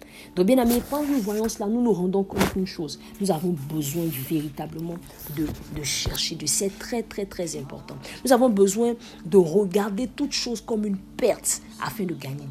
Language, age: French, 50-69